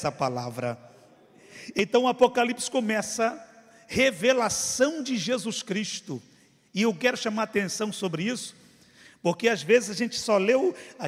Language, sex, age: Portuguese, male, 50-69